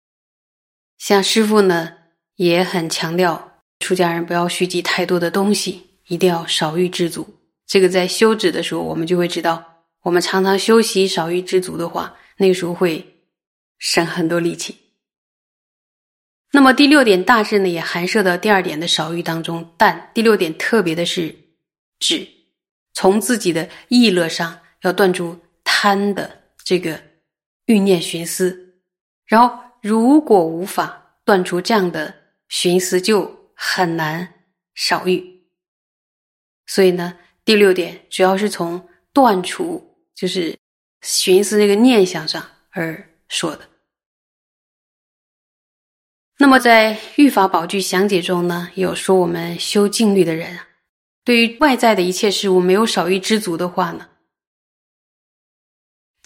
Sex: female